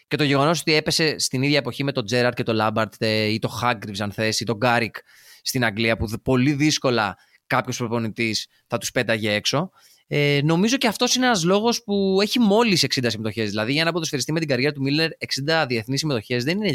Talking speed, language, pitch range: 210 wpm, Greek, 115-155 Hz